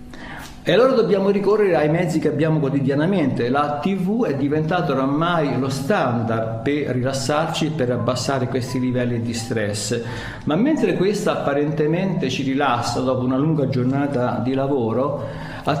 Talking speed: 140 wpm